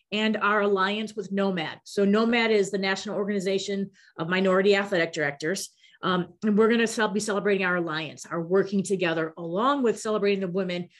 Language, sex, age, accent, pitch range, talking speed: English, female, 30-49, American, 180-215 Hz, 170 wpm